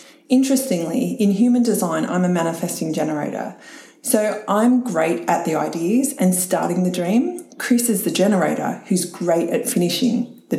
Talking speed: 155 wpm